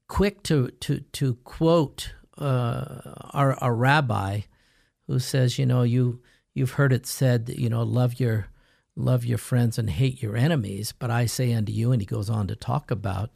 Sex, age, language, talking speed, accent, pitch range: male, 50-69, English, 180 wpm, American, 115-135 Hz